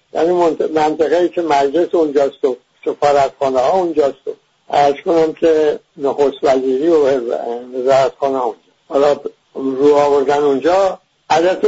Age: 60-79